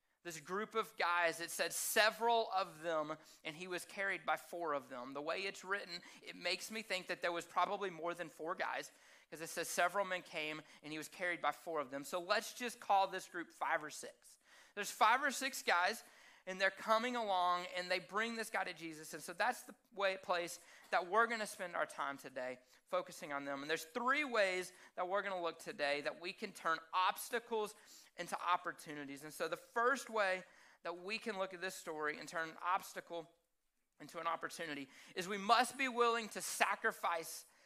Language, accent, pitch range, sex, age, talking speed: English, American, 165-210 Hz, male, 30-49, 205 wpm